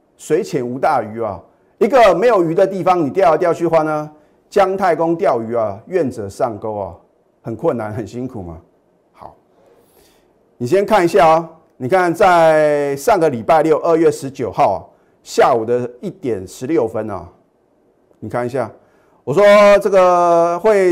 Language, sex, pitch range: Chinese, male, 120-170 Hz